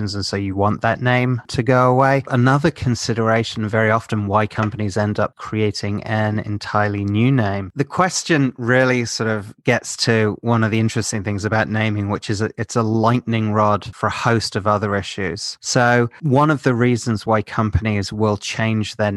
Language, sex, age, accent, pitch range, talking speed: English, male, 30-49, British, 105-125 Hz, 180 wpm